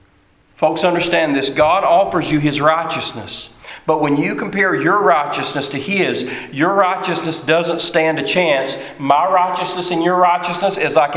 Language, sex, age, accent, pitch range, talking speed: English, male, 40-59, American, 155-230 Hz, 155 wpm